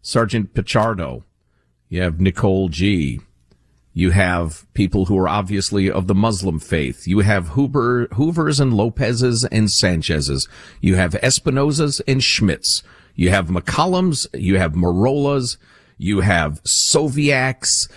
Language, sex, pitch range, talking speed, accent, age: English, male, 85-125 Hz, 125 wpm, American, 50-69